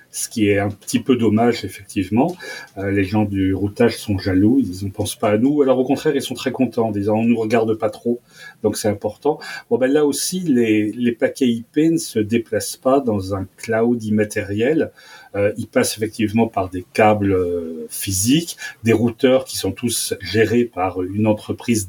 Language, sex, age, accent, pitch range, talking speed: French, male, 40-59, French, 100-130 Hz, 195 wpm